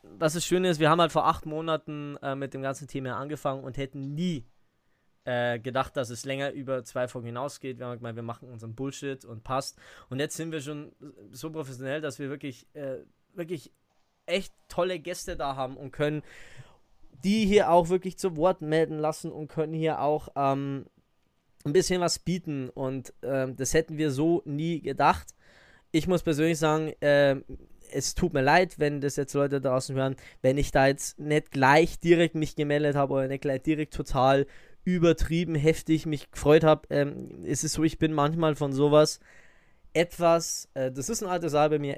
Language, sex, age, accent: German, male, 20-39, German